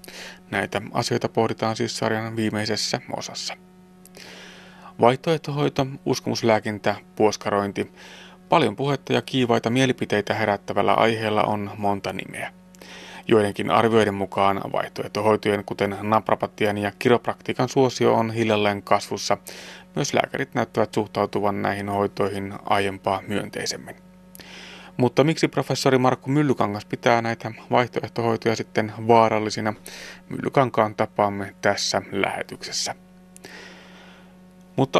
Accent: native